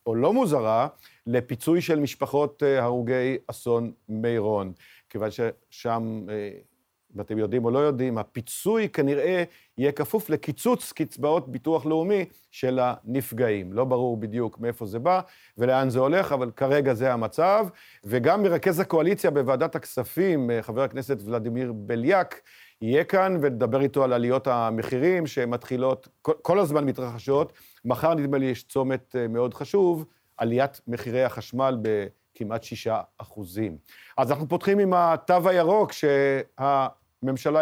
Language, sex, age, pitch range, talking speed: Hebrew, male, 50-69, 120-150 Hz, 125 wpm